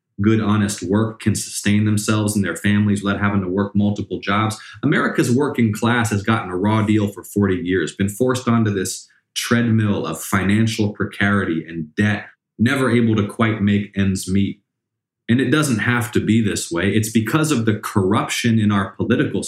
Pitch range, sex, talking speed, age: 100-120 Hz, male, 180 wpm, 20-39